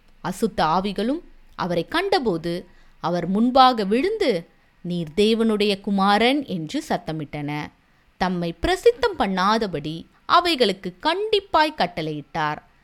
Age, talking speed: 20-39, 85 wpm